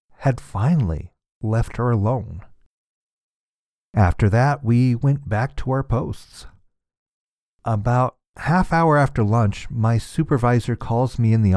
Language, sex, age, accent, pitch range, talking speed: English, male, 40-59, American, 100-135 Hz, 125 wpm